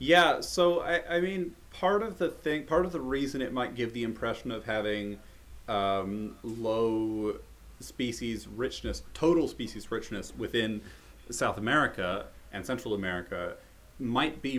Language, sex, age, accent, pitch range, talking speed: English, male, 30-49, American, 100-135 Hz, 145 wpm